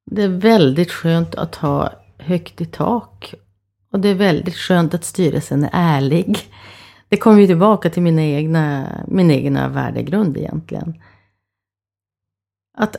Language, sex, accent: Swedish, female, native